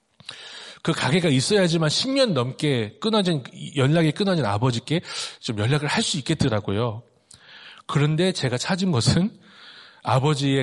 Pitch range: 125-175 Hz